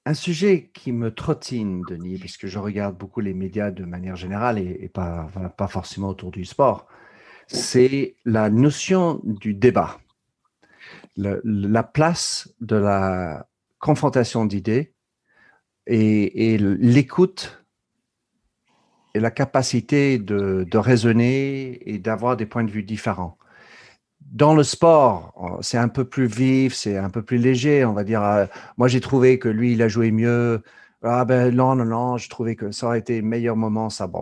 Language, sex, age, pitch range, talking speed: French, male, 50-69, 100-130 Hz, 155 wpm